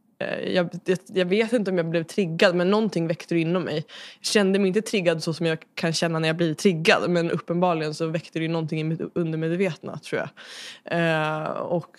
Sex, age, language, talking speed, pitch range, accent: female, 20-39, Swedish, 200 wpm, 160-180 Hz, native